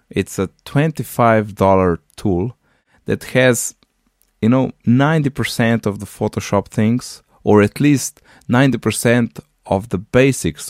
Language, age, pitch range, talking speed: English, 20-39, 80-105 Hz, 130 wpm